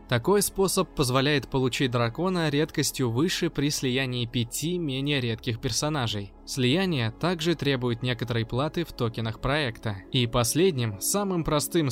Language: Russian